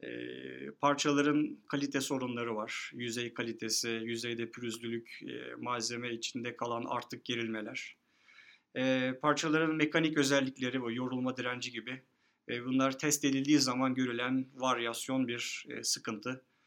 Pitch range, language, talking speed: 120-145 Hz, Turkish, 95 wpm